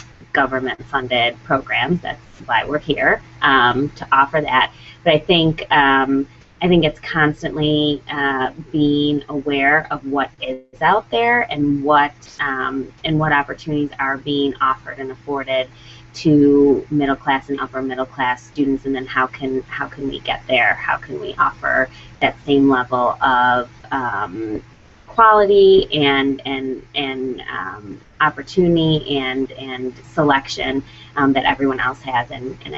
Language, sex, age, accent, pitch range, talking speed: English, female, 20-39, American, 130-145 Hz, 140 wpm